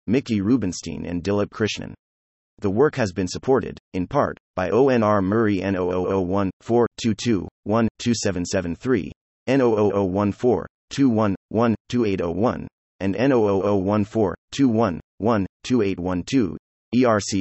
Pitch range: 90-120 Hz